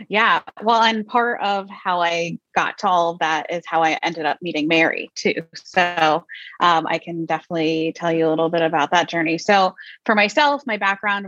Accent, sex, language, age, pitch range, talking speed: American, female, English, 20-39, 170-225 Hz, 195 wpm